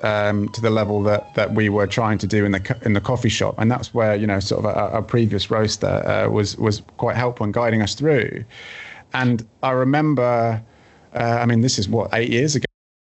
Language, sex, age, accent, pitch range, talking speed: English, male, 30-49, British, 105-125 Hz, 230 wpm